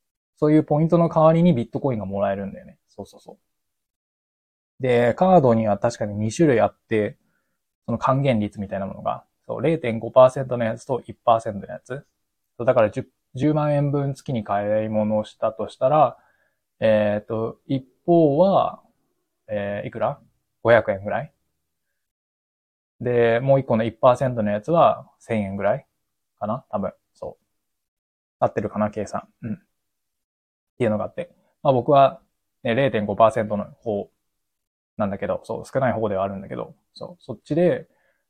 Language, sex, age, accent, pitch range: Japanese, male, 20-39, native, 105-135 Hz